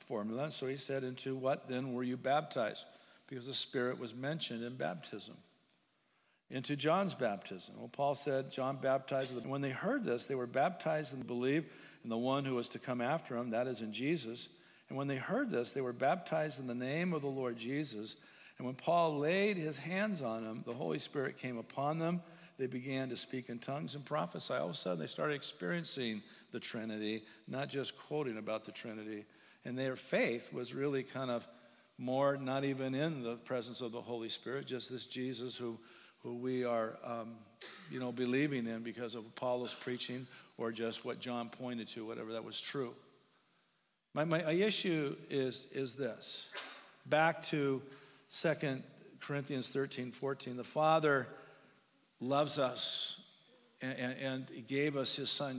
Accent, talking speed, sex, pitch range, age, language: American, 180 wpm, male, 120-140 Hz, 50-69, English